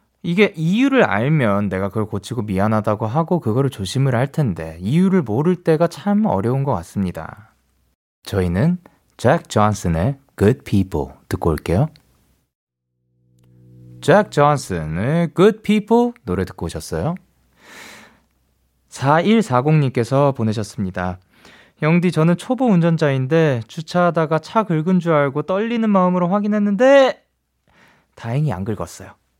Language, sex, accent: Korean, male, native